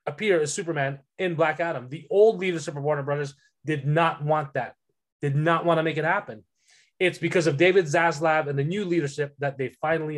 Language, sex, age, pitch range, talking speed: English, male, 20-39, 145-175 Hz, 205 wpm